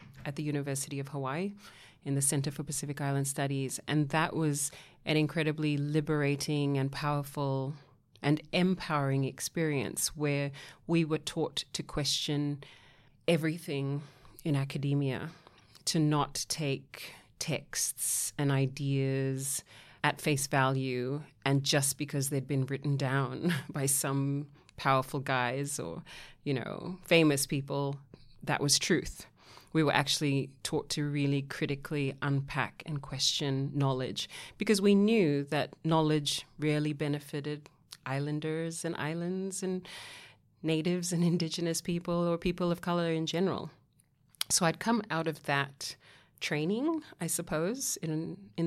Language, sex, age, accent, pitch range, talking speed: English, female, 30-49, Australian, 140-160 Hz, 125 wpm